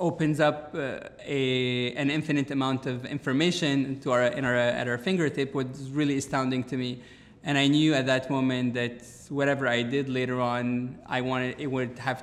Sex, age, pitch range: male, 20-39, 125-145 Hz